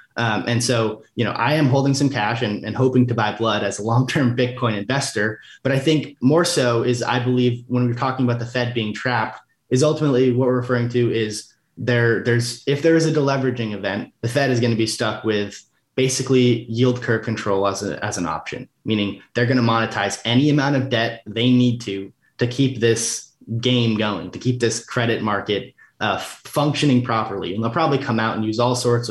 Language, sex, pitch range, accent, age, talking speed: English, male, 110-130 Hz, American, 30-49, 205 wpm